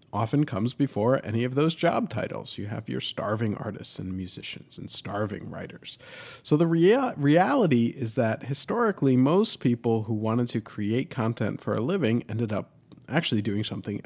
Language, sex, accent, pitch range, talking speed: English, male, American, 105-145 Hz, 165 wpm